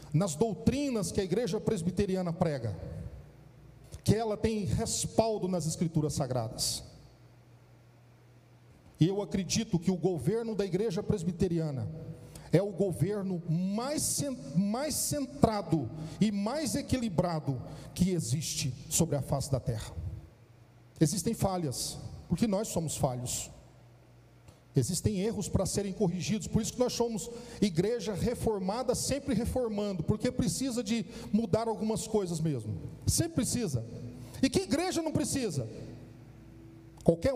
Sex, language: male, Portuguese